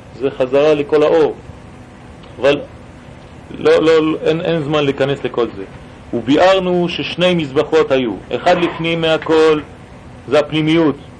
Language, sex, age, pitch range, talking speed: French, male, 40-59, 145-170 Hz, 125 wpm